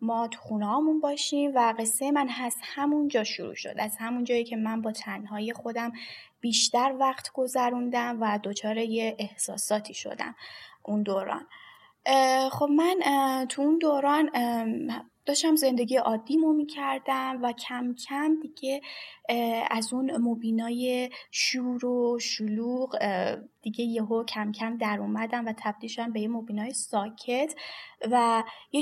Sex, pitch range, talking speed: female, 220-265 Hz, 130 wpm